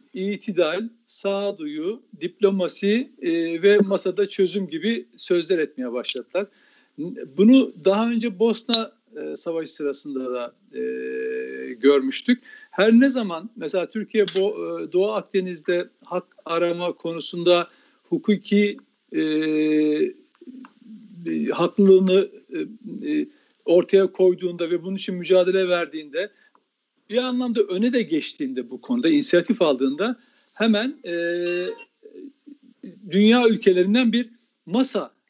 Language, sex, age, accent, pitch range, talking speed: Turkish, male, 50-69, native, 165-240 Hz, 100 wpm